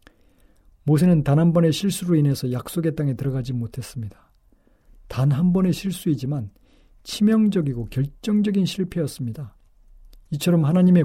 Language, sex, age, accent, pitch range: Korean, male, 40-59, native, 130-170 Hz